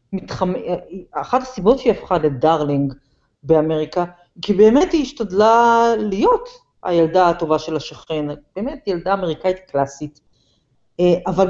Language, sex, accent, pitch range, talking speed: Hebrew, female, native, 165-230 Hz, 110 wpm